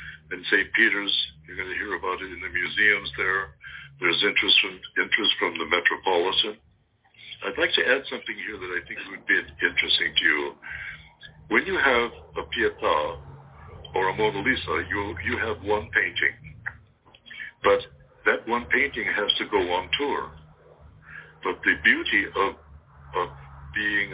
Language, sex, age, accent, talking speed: English, male, 60-79, American, 155 wpm